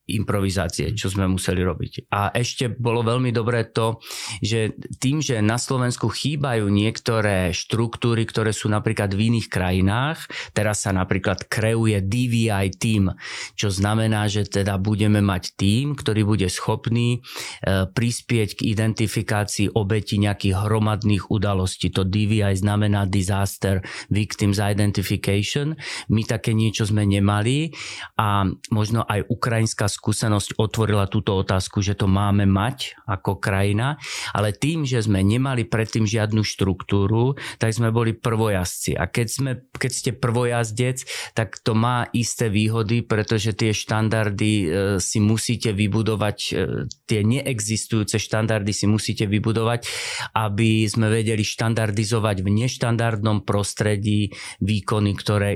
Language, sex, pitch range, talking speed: Slovak, male, 100-115 Hz, 125 wpm